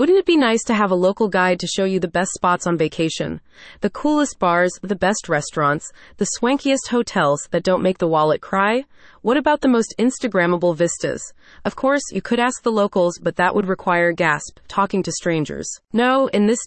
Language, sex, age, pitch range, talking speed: English, female, 30-49, 170-230 Hz, 200 wpm